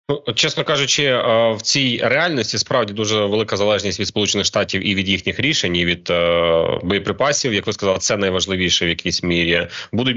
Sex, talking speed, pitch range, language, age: male, 165 wpm, 95-115 Hz, Ukrainian, 30-49